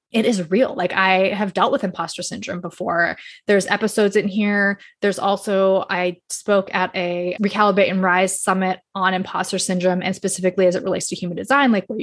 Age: 20-39